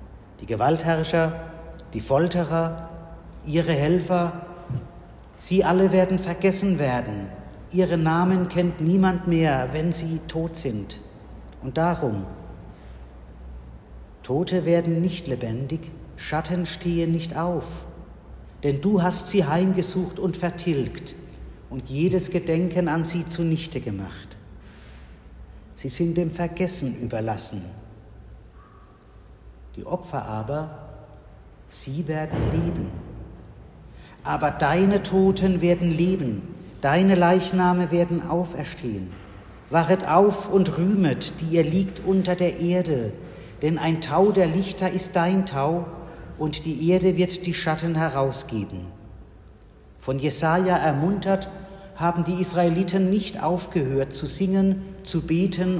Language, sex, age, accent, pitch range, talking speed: German, male, 50-69, German, 130-180 Hz, 110 wpm